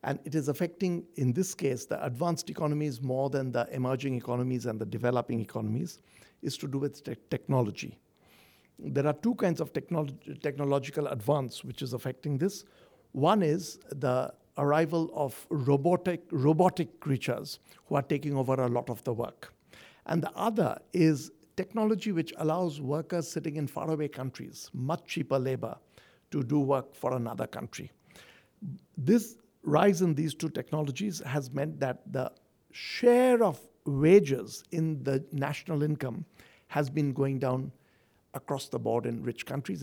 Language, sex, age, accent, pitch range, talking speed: English, male, 60-79, Indian, 135-190 Hz, 150 wpm